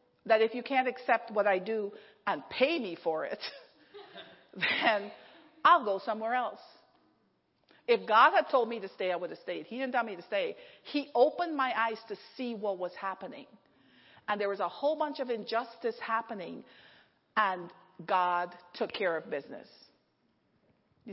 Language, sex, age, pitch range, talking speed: English, female, 40-59, 175-230 Hz, 170 wpm